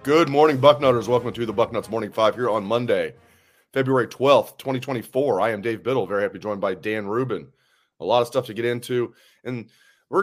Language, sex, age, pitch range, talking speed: English, male, 30-49, 115-145 Hz, 210 wpm